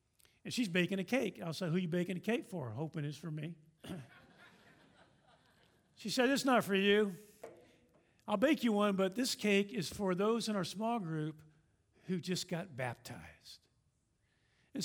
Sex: male